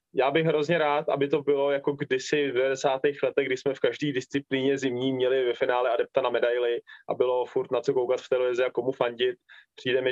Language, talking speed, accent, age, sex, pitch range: Czech, 220 wpm, native, 20-39, male, 130-160 Hz